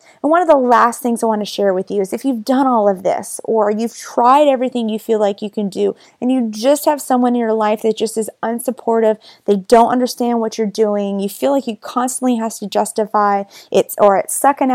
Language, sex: English, female